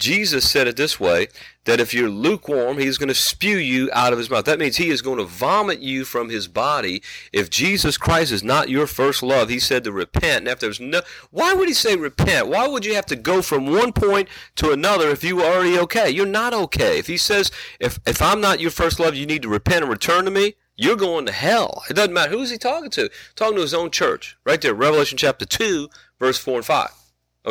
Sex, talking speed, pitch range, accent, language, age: male, 250 wpm, 130-185 Hz, American, English, 40-59